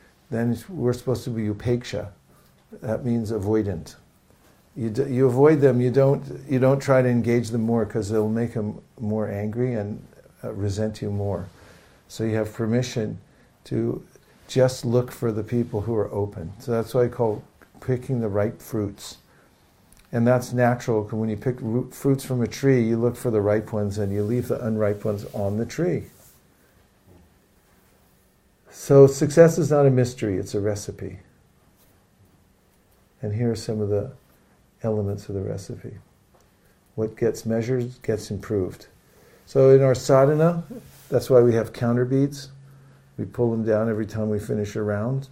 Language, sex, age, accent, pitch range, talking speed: English, male, 50-69, American, 105-125 Hz, 170 wpm